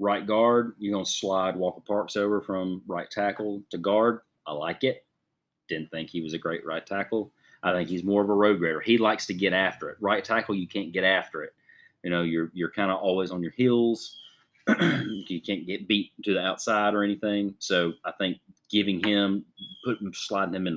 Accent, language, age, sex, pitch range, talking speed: American, English, 30-49, male, 90-115 Hz, 215 wpm